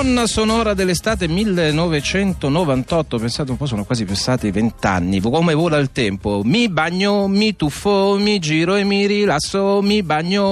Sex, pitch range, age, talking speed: male, 125-200 Hz, 40-59, 145 wpm